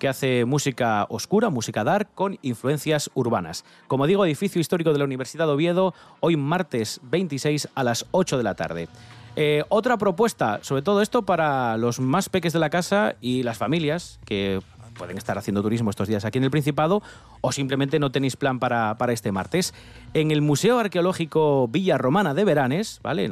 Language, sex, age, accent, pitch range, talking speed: Spanish, male, 30-49, Spanish, 120-180 Hz, 190 wpm